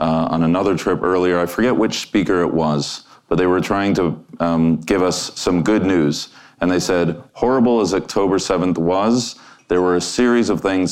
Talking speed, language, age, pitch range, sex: 200 wpm, English, 40-59, 85-95 Hz, male